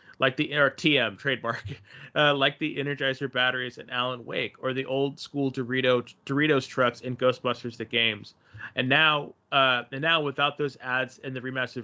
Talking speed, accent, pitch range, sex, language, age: 180 wpm, American, 120-140 Hz, male, English, 30-49